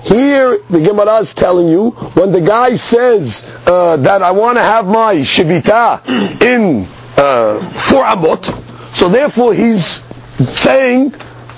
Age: 40-59